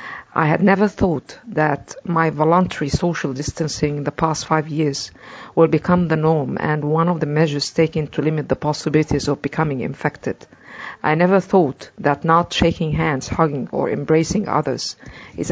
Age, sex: 50-69, female